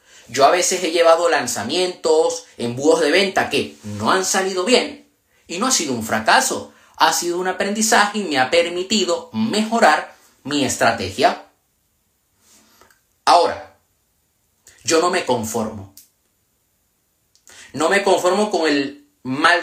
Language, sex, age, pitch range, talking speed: Spanish, male, 30-49, 155-230 Hz, 130 wpm